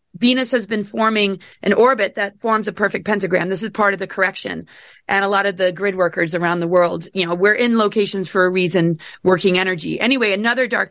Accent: American